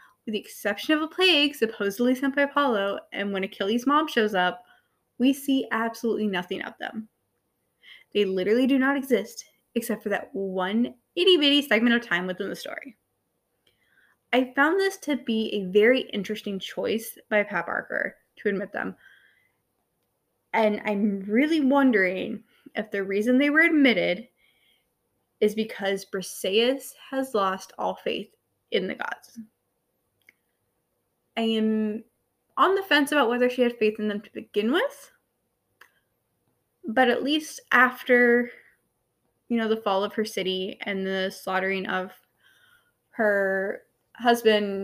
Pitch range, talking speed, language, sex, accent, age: 200-260 Hz, 140 wpm, English, female, American, 20-39